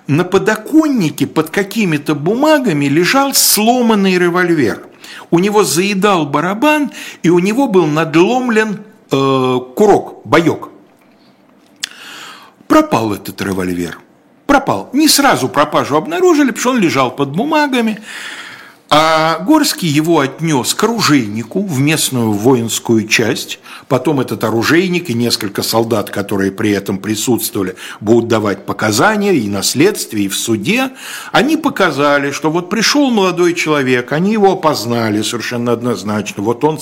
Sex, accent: male, native